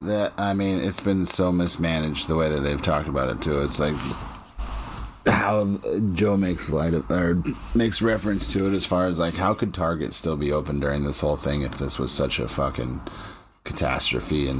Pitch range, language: 75-95 Hz, English